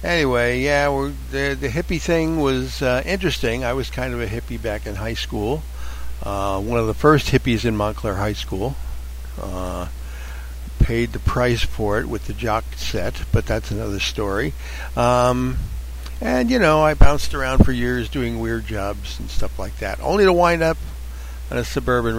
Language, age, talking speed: English, 60-79, 180 wpm